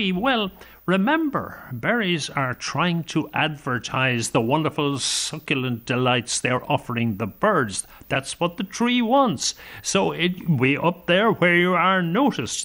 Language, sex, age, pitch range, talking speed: English, male, 60-79, 125-190 Hz, 140 wpm